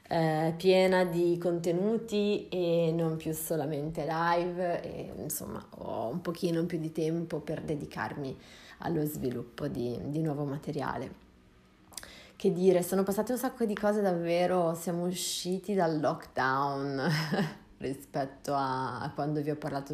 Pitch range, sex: 145-170 Hz, female